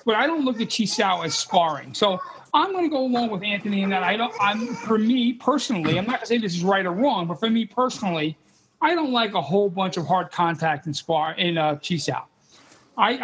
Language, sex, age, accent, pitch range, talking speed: English, male, 40-59, American, 185-235 Hz, 250 wpm